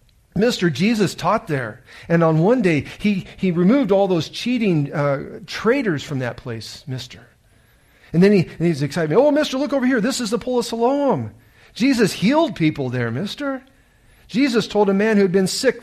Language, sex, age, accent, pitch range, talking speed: English, male, 50-69, American, 120-195 Hz, 180 wpm